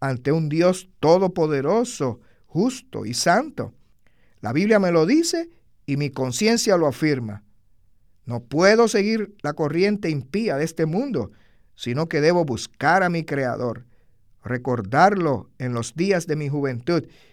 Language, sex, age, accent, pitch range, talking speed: Spanish, male, 50-69, American, 130-200 Hz, 140 wpm